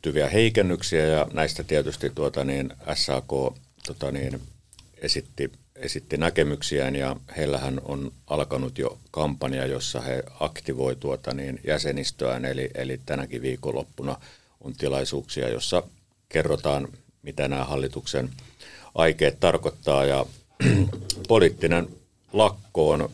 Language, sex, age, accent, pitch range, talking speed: Finnish, male, 50-69, native, 65-80 Hz, 110 wpm